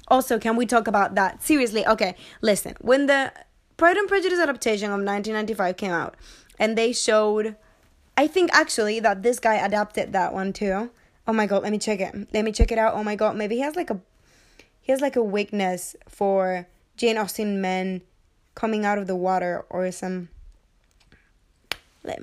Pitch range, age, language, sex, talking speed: 200-250 Hz, 10-29, English, female, 185 wpm